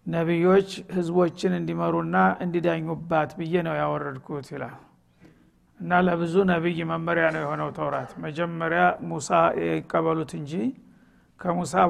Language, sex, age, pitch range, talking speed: Amharic, male, 50-69, 155-180 Hz, 95 wpm